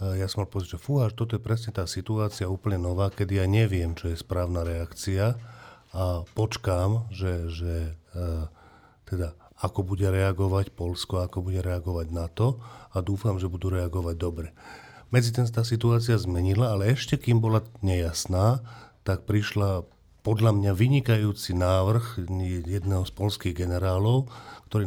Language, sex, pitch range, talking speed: Slovak, male, 90-110 Hz, 145 wpm